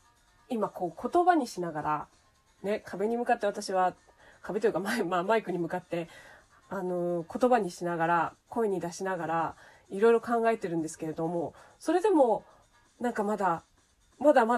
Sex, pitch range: female, 175-225 Hz